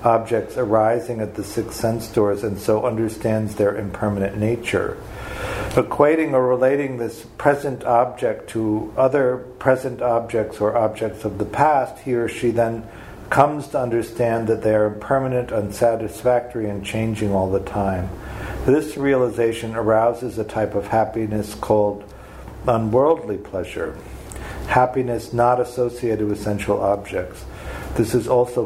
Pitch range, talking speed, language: 105-120 Hz, 135 wpm, English